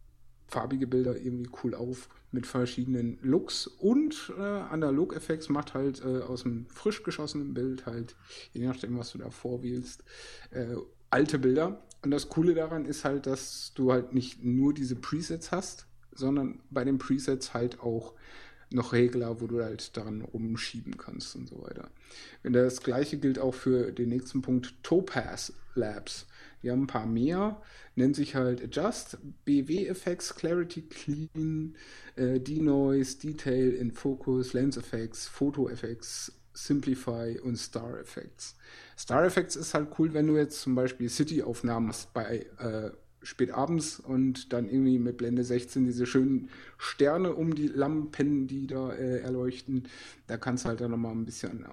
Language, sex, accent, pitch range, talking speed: German, male, German, 120-145 Hz, 155 wpm